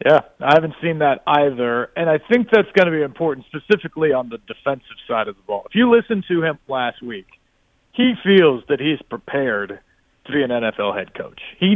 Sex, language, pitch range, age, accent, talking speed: male, English, 135-175 Hz, 40-59, American, 210 wpm